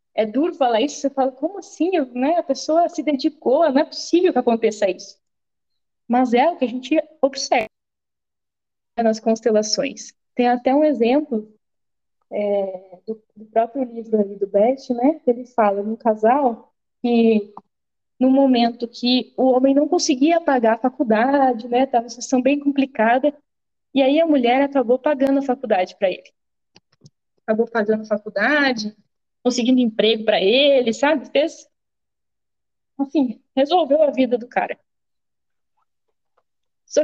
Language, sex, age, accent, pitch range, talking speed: Portuguese, female, 20-39, Brazilian, 220-280 Hz, 150 wpm